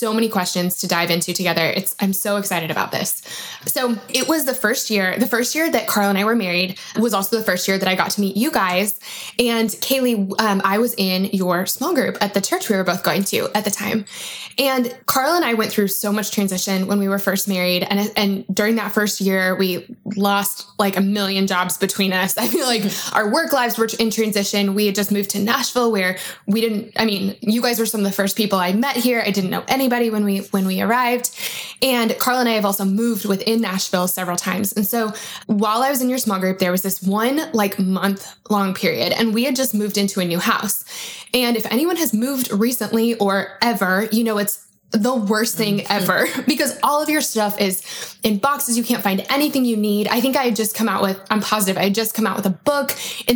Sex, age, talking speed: female, 20-39, 240 wpm